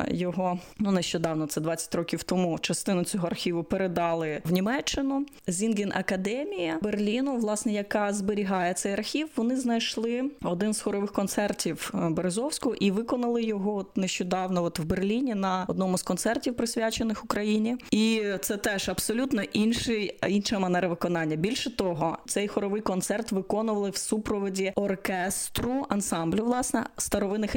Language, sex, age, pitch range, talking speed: Ukrainian, female, 20-39, 175-215 Hz, 135 wpm